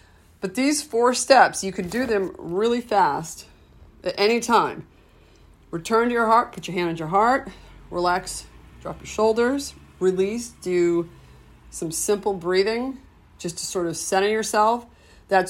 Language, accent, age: English, American, 40-59